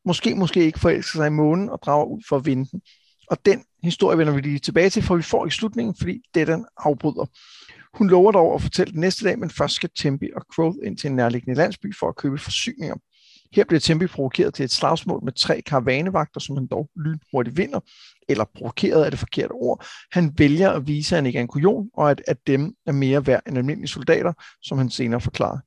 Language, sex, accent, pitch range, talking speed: Danish, male, native, 140-175 Hz, 225 wpm